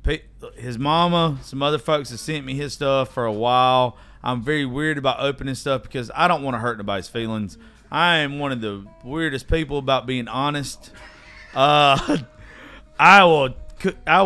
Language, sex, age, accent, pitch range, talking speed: English, male, 40-59, American, 120-160 Hz, 175 wpm